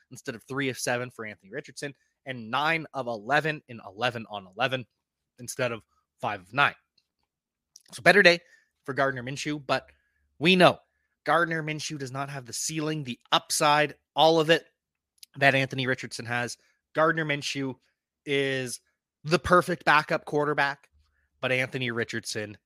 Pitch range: 120-160 Hz